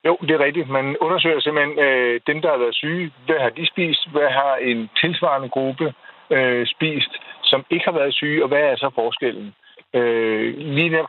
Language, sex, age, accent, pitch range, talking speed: Danish, male, 60-79, native, 120-155 Hz, 200 wpm